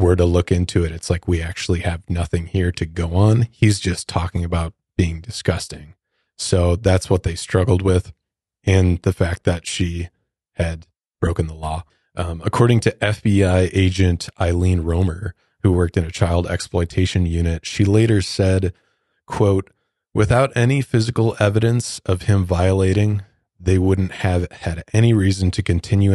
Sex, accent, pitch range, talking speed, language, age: male, American, 85-100 Hz, 160 wpm, English, 30-49